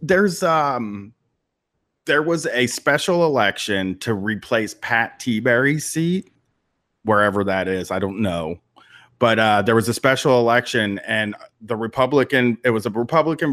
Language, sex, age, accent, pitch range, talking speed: English, male, 30-49, American, 105-135 Hz, 140 wpm